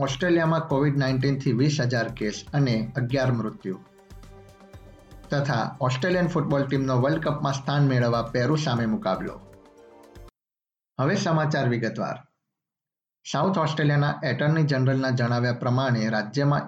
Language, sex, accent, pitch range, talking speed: Gujarati, male, native, 125-145 Hz, 40 wpm